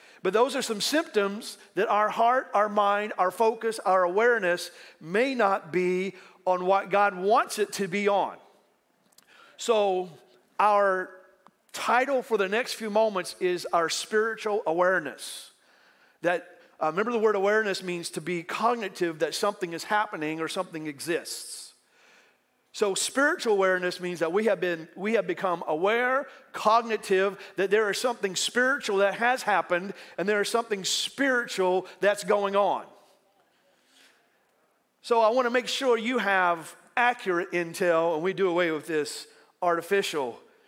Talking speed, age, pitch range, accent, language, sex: 150 wpm, 40-59, 180-220 Hz, American, English, male